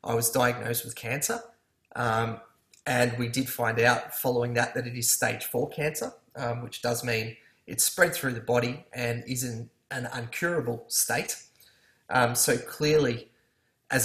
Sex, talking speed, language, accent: male, 160 wpm, English, Australian